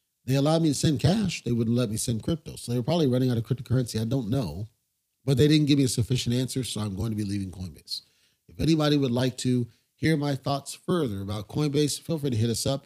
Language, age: English, 40-59